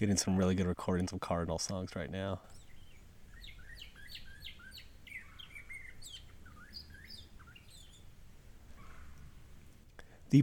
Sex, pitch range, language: male, 95-120 Hz, English